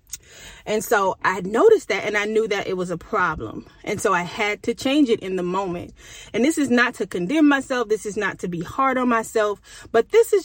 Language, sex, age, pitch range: English, female, 30-49, 185-245 Hz